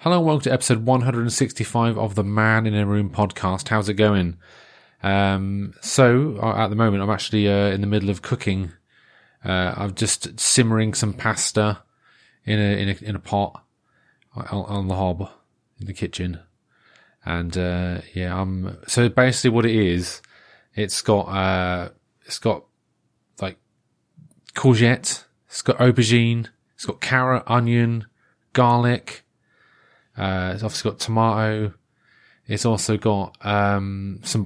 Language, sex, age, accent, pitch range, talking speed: English, male, 30-49, British, 100-130 Hz, 145 wpm